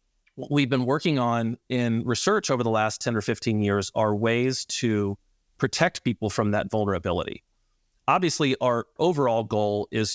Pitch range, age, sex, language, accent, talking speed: 100-125 Hz, 40-59, male, English, American, 160 wpm